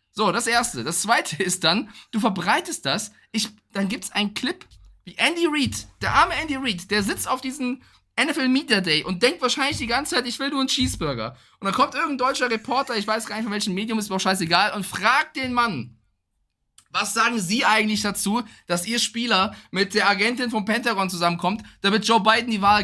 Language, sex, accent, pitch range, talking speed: German, male, German, 180-250 Hz, 205 wpm